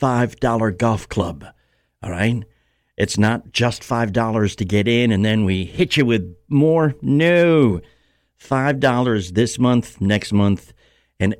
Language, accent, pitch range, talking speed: English, American, 90-120 Hz, 155 wpm